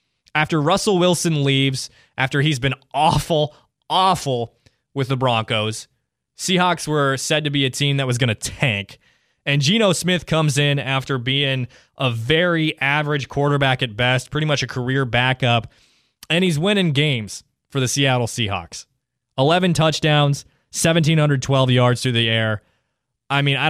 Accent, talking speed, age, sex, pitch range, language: American, 150 wpm, 20-39, male, 120-145 Hz, English